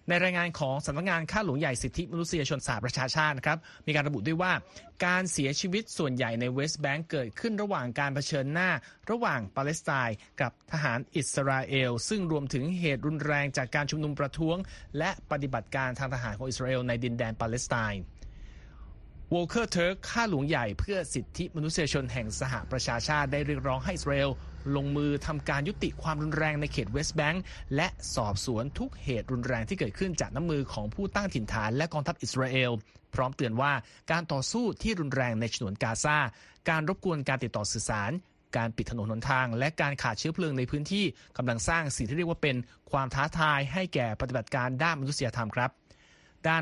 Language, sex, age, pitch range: Thai, male, 30-49, 125-160 Hz